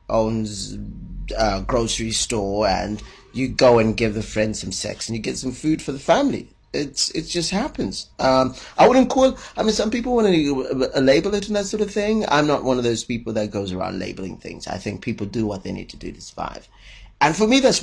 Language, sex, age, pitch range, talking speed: English, male, 30-49, 110-180 Hz, 230 wpm